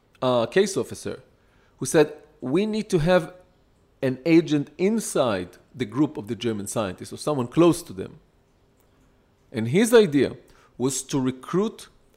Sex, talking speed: male, 145 wpm